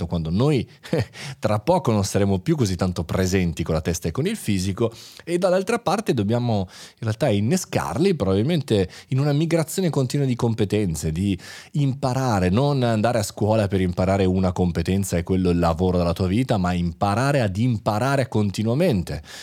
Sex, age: male, 30-49